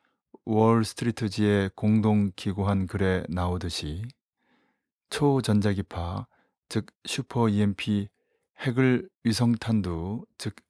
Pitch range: 95-115 Hz